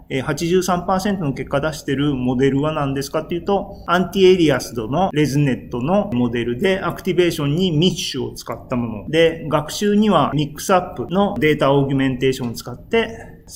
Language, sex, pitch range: Japanese, male, 130-180 Hz